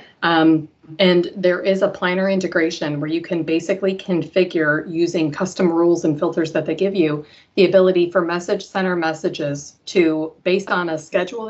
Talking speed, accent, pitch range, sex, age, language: 165 wpm, American, 160-185 Hz, female, 30-49, English